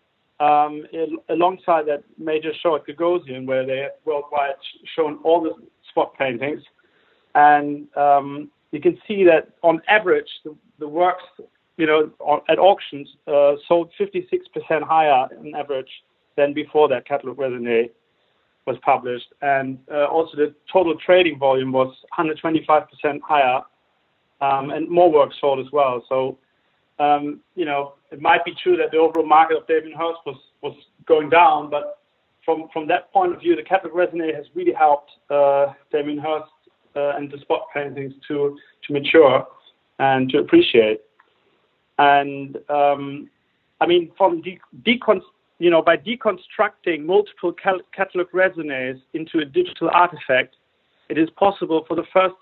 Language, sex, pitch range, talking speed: English, male, 145-180 Hz, 160 wpm